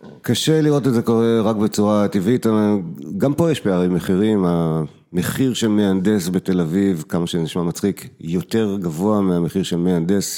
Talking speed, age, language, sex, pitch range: 155 wpm, 50-69, Hebrew, male, 90-110 Hz